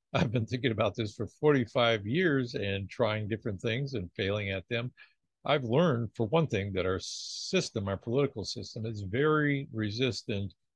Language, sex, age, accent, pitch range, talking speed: English, male, 60-79, American, 105-135 Hz, 165 wpm